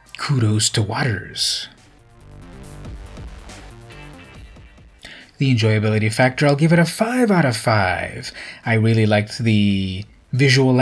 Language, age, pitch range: English, 30-49, 100-115 Hz